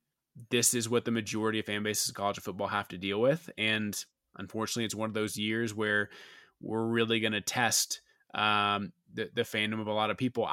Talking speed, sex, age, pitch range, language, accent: 210 wpm, male, 20-39, 110-135 Hz, English, American